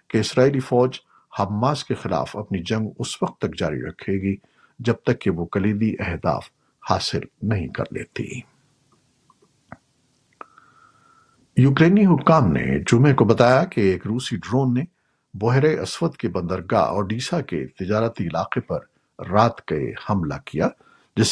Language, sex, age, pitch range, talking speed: Urdu, male, 50-69, 100-140 Hz, 140 wpm